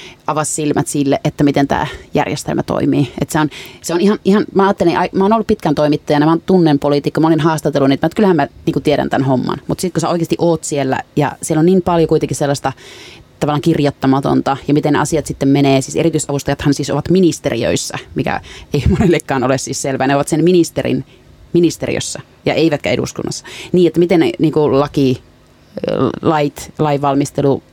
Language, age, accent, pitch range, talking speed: Finnish, 30-49, native, 140-165 Hz, 180 wpm